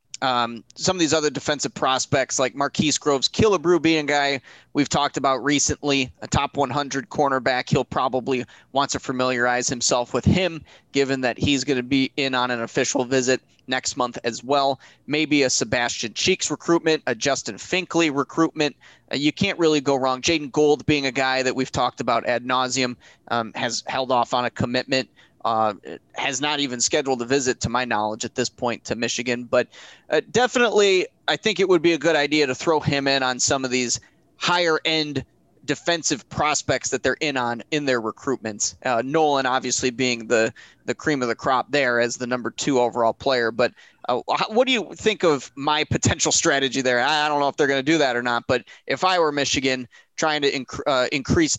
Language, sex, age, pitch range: English, male, 20-39, 125-150 Hz